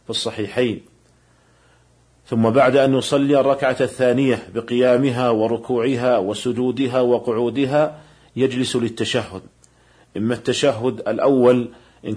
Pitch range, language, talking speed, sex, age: 115-130 Hz, Arabic, 85 wpm, male, 40-59